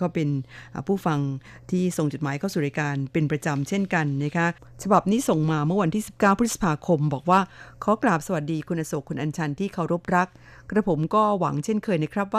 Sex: female